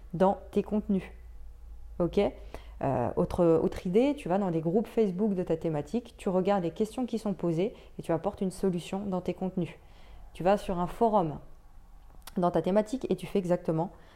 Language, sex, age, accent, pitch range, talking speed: French, female, 20-39, French, 170-205 Hz, 180 wpm